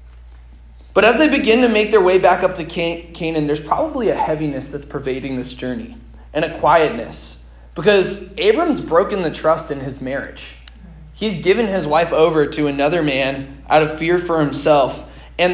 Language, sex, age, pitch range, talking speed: English, male, 20-39, 140-185 Hz, 175 wpm